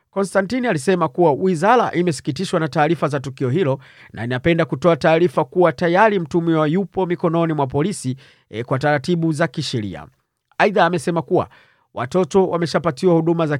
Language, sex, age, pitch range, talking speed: Swahili, male, 40-59, 140-175 Hz, 140 wpm